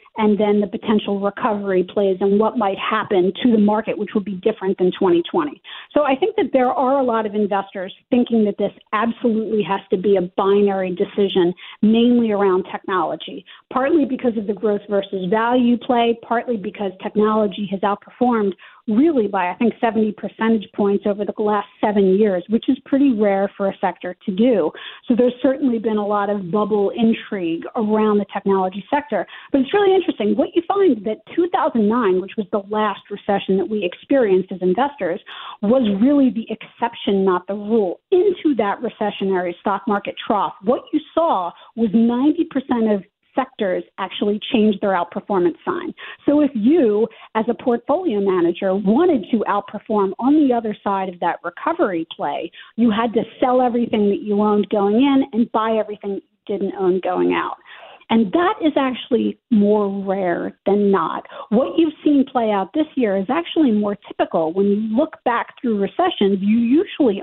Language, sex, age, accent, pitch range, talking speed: English, female, 40-59, American, 200-250 Hz, 175 wpm